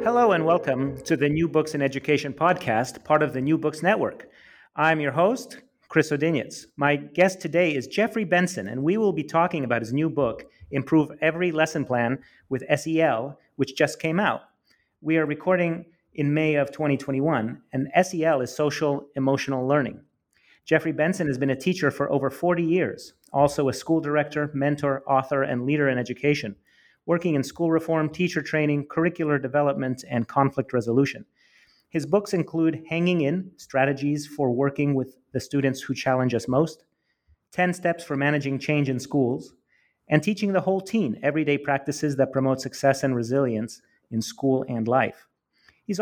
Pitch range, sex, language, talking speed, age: 135-160 Hz, male, English, 170 wpm, 30-49